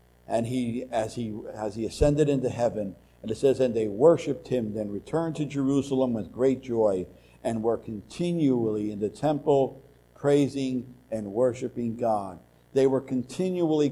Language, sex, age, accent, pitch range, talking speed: English, male, 60-79, American, 110-145 Hz, 155 wpm